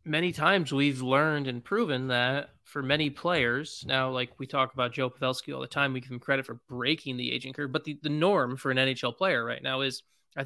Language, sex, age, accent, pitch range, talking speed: English, male, 20-39, American, 130-155 Hz, 235 wpm